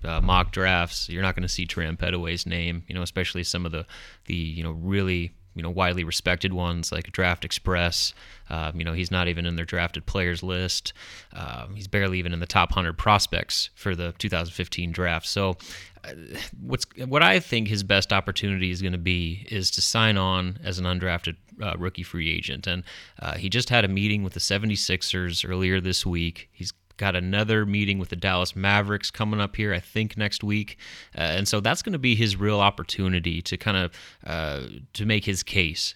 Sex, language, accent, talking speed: male, English, American, 200 wpm